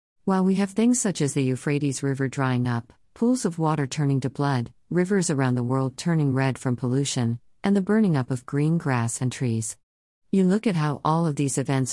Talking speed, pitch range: 210 wpm, 130-160 Hz